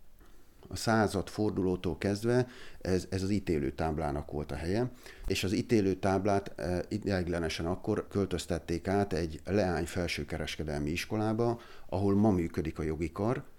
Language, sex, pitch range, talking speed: Hungarian, male, 80-100 Hz, 130 wpm